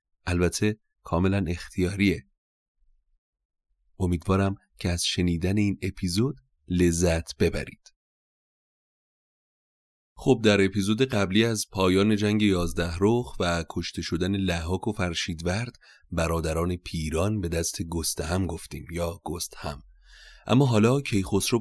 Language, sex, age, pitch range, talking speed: Persian, male, 30-49, 85-105 Hz, 110 wpm